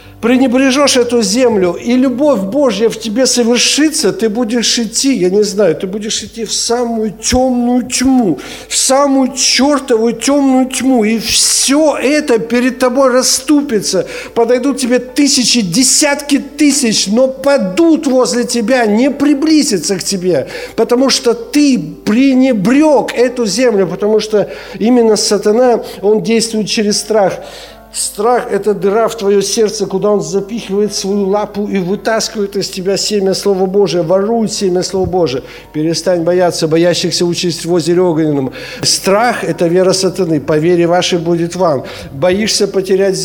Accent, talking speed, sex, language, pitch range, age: native, 140 wpm, male, Ukrainian, 185-245 Hz, 50-69